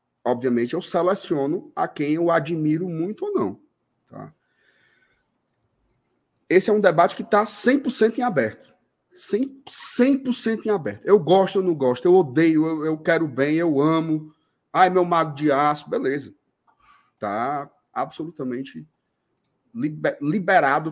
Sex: male